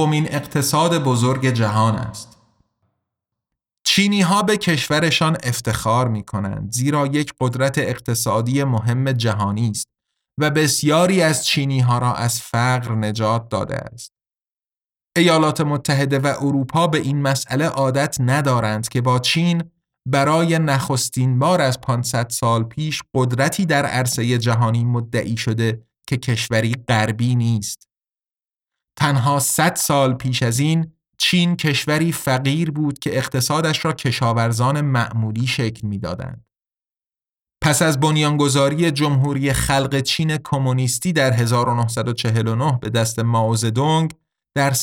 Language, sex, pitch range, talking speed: Persian, male, 120-150 Hz, 120 wpm